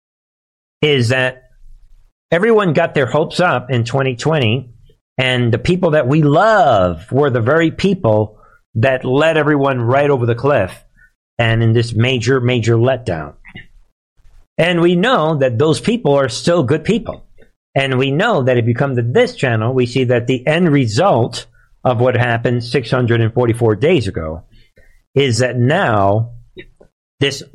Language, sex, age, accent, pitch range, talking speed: English, male, 50-69, American, 115-150 Hz, 150 wpm